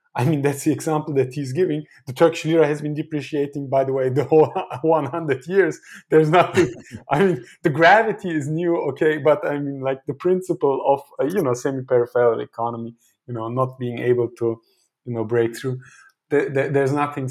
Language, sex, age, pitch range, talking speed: English, male, 20-39, 120-155 Hz, 195 wpm